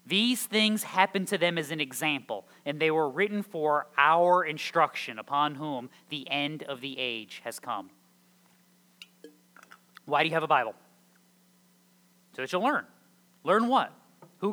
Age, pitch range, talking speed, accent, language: 30-49, 130-185 Hz, 155 wpm, American, English